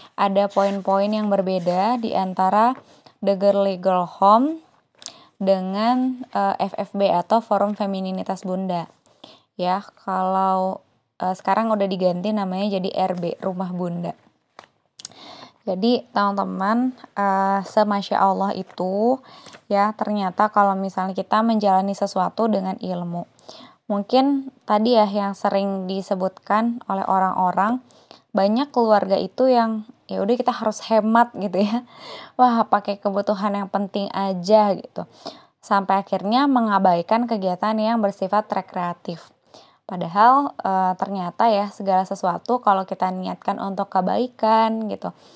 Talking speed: 110 wpm